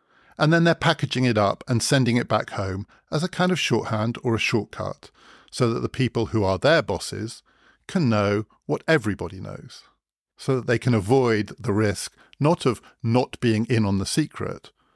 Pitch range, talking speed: 105-130 Hz, 190 wpm